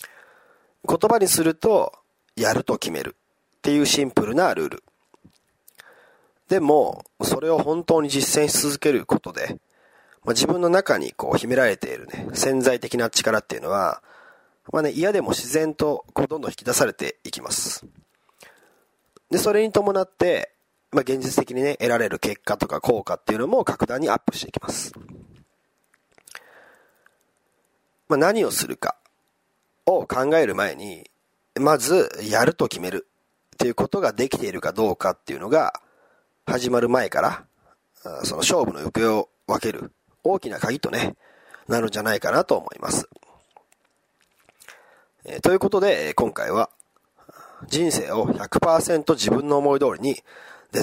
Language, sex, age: Japanese, male, 40-59